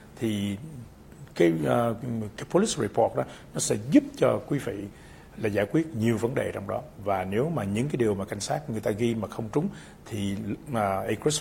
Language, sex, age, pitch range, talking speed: English, male, 60-79, 100-130 Hz, 210 wpm